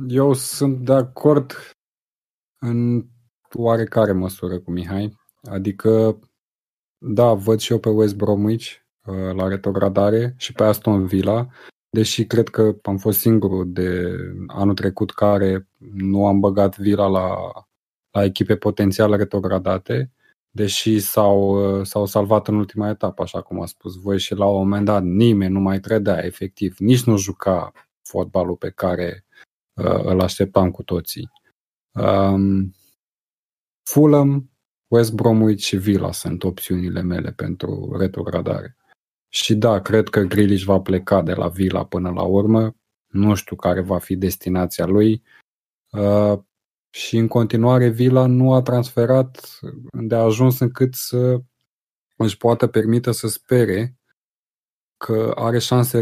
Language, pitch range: Romanian, 95-115 Hz